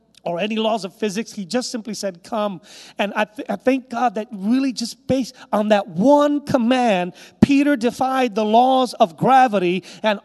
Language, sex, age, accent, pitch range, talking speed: English, male, 40-59, American, 230-290 Hz, 180 wpm